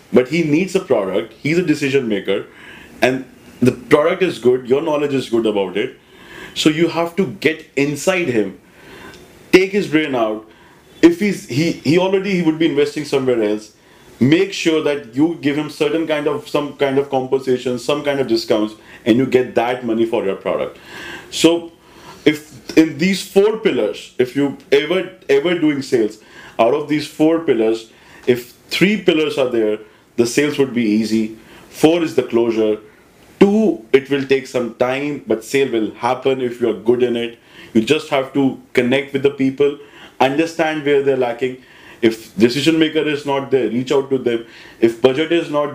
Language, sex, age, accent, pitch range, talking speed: Hindi, male, 30-49, native, 125-165 Hz, 185 wpm